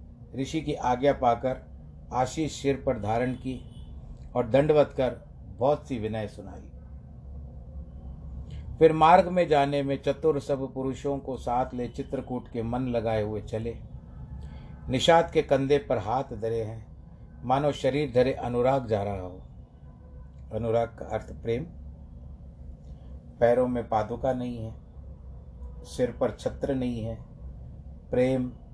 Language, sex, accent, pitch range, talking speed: Hindi, male, native, 90-130 Hz, 130 wpm